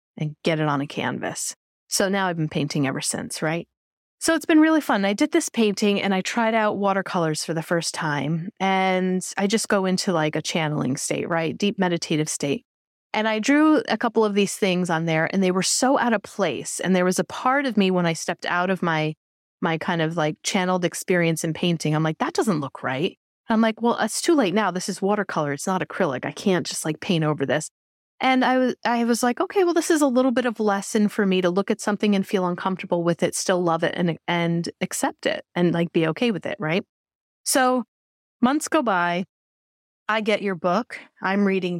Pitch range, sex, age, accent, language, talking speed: 170-215 Hz, female, 30-49, American, English, 230 wpm